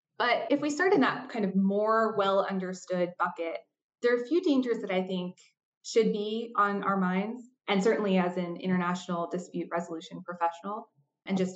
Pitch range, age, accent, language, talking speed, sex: 175-210 Hz, 20-39, American, English, 175 wpm, female